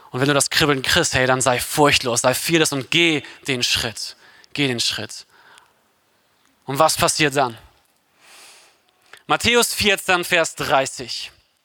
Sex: male